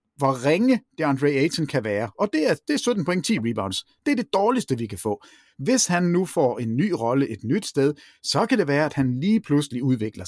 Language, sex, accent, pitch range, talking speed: Danish, male, native, 120-165 Hz, 240 wpm